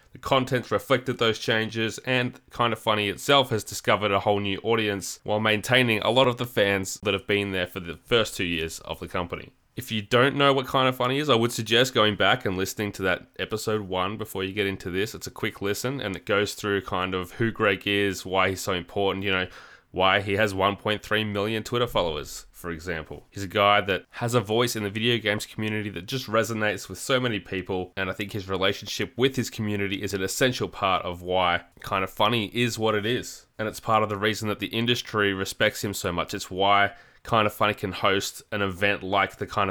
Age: 20-39